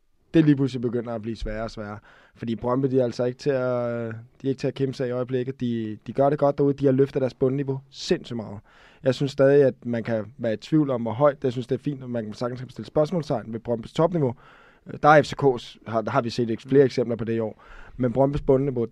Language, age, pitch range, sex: Danish, 20-39, 120-145 Hz, male